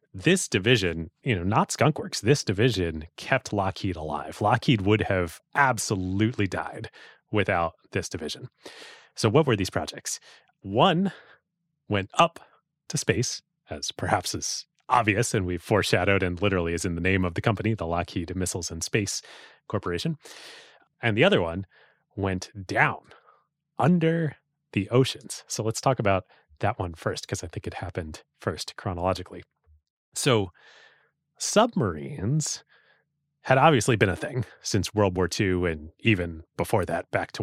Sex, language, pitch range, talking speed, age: male, English, 90-125 Hz, 145 wpm, 30-49